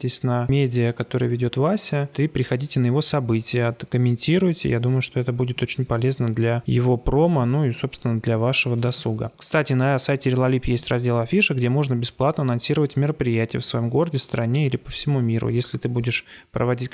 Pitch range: 120-140 Hz